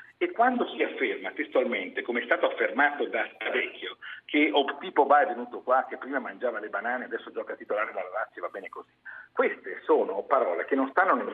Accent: native